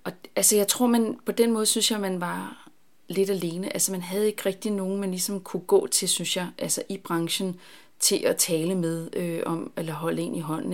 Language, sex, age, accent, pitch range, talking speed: Danish, female, 30-49, native, 170-230 Hz, 230 wpm